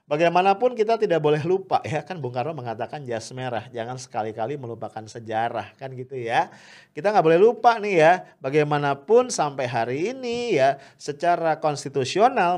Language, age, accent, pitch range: English, 40-59, Indonesian, 120-160 Hz